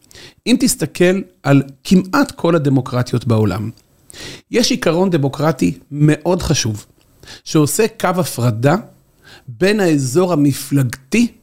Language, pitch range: Hebrew, 135-185 Hz